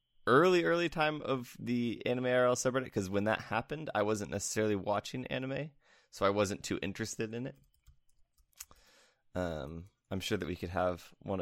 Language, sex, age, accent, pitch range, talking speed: English, male, 20-39, American, 95-115 Hz, 170 wpm